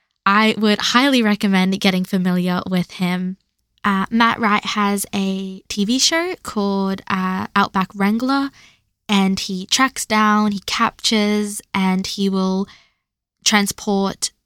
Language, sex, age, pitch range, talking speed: English, female, 10-29, 195-225 Hz, 120 wpm